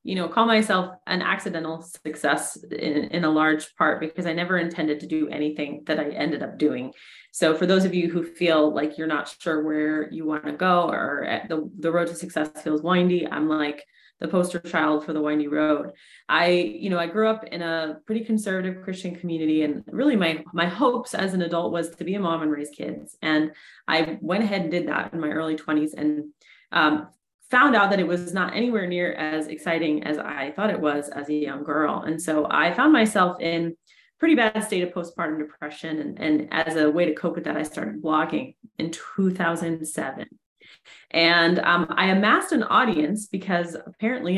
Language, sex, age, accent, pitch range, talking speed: English, female, 20-39, American, 155-185 Hz, 205 wpm